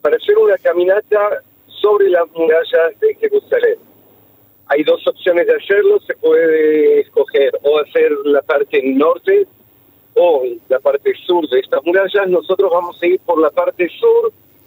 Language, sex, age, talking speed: Spanish, male, 50-69, 150 wpm